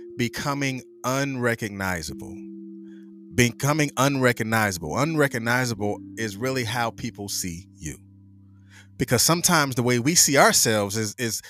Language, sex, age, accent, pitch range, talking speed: English, male, 30-49, American, 100-145 Hz, 105 wpm